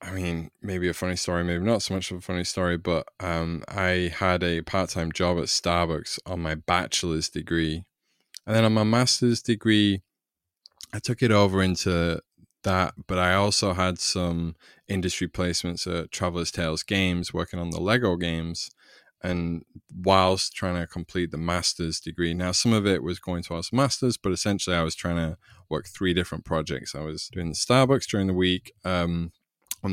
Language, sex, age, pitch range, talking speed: English, male, 20-39, 85-95 Hz, 185 wpm